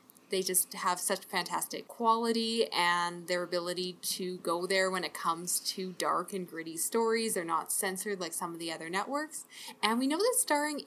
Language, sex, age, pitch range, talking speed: English, female, 10-29, 180-220 Hz, 190 wpm